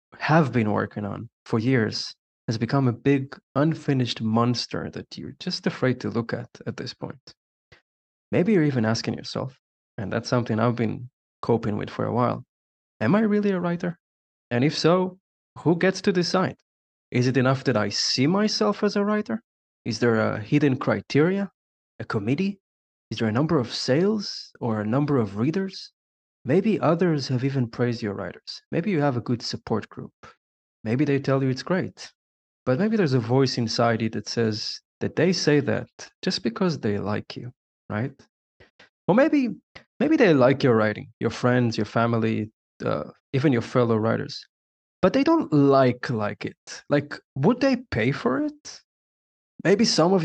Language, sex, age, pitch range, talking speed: English, male, 20-39, 115-165 Hz, 175 wpm